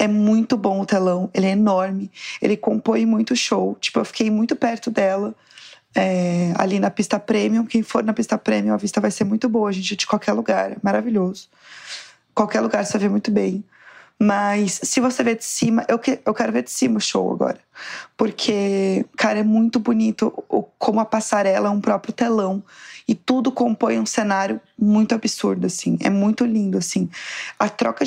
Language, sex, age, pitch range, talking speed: Portuguese, female, 20-39, 205-240 Hz, 180 wpm